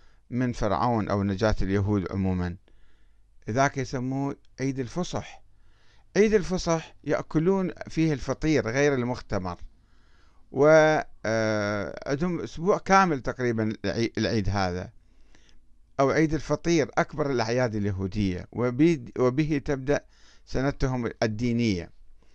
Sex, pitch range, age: male, 105-150 Hz, 50-69